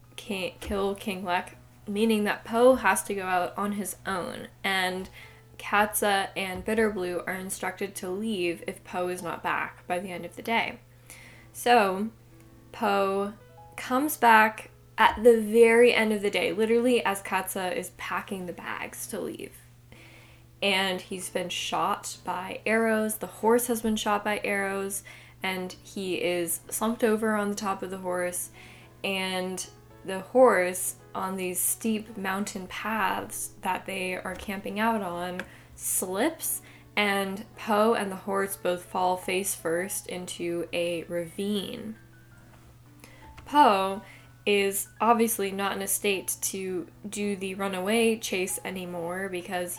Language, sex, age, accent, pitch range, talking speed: English, female, 10-29, American, 175-210 Hz, 140 wpm